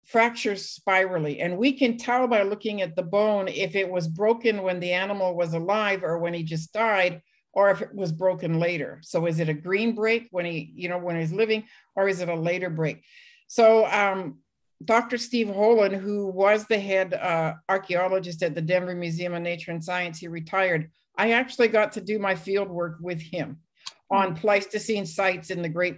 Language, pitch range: English, 175-215 Hz